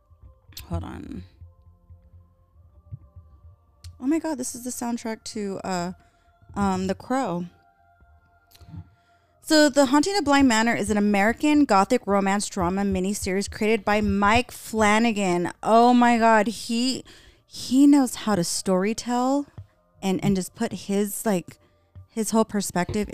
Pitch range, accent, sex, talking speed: 160-230 Hz, American, female, 125 wpm